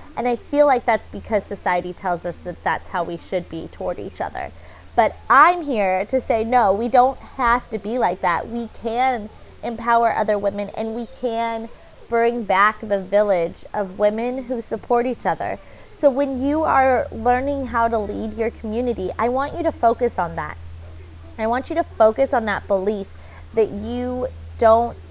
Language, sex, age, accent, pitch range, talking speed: English, female, 20-39, American, 190-245 Hz, 185 wpm